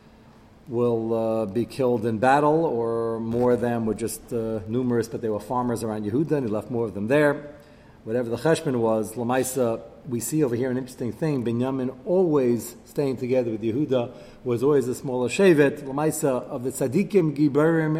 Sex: male